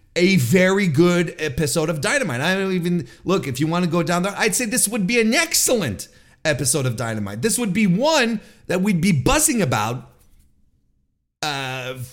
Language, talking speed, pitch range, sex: English, 185 wpm, 135-210 Hz, male